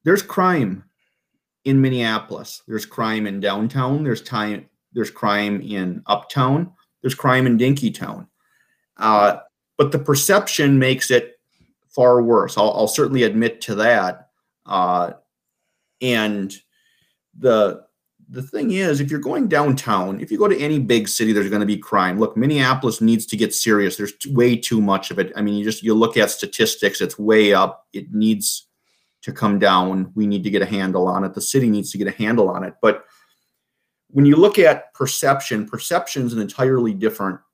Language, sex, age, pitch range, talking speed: English, male, 30-49, 100-130 Hz, 175 wpm